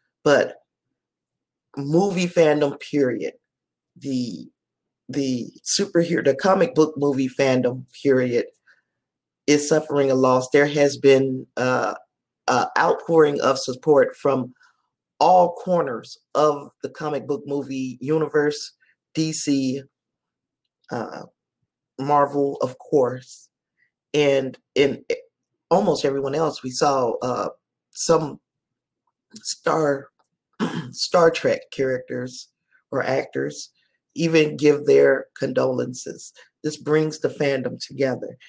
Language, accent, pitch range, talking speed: English, American, 130-155 Hz, 100 wpm